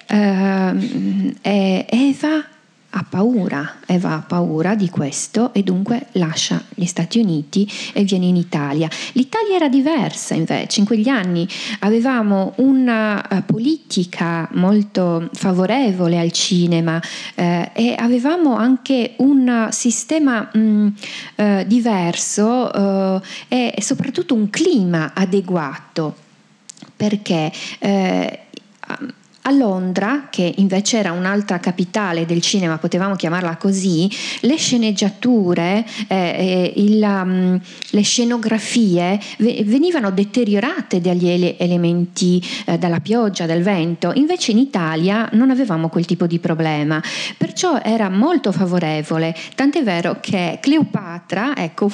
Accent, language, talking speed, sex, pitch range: native, Italian, 115 wpm, female, 175-235 Hz